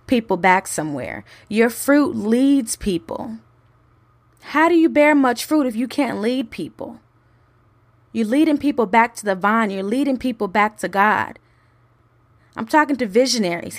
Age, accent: 20-39, American